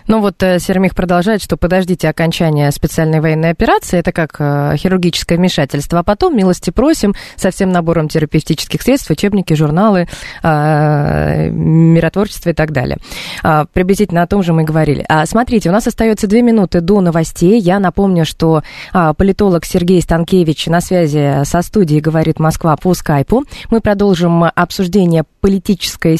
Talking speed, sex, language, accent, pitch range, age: 140 wpm, female, Russian, native, 160-200 Hz, 20-39